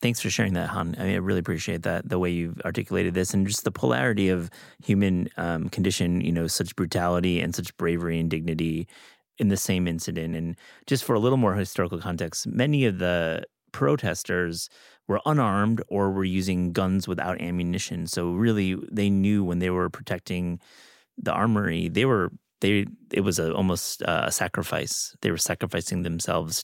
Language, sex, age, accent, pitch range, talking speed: English, male, 30-49, American, 85-100 Hz, 175 wpm